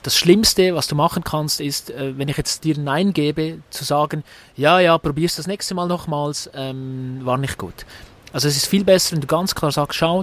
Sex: male